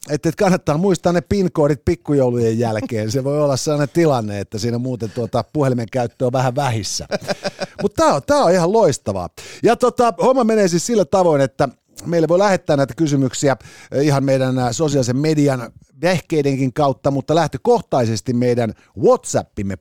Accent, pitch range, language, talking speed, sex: native, 125-175 Hz, Finnish, 150 wpm, male